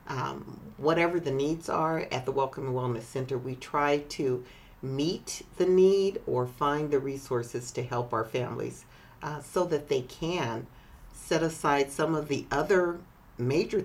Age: 50-69